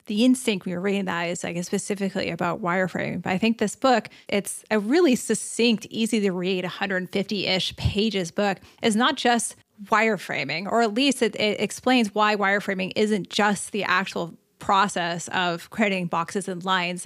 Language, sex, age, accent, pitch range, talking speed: English, female, 30-49, American, 185-225 Hz, 170 wpm